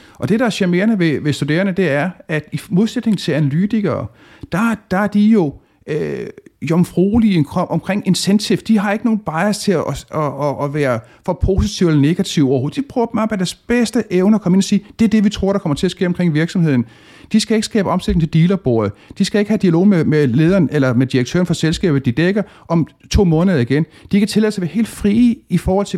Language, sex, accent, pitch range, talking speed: Danish, male, native, 150-205 Hz, 240 wpm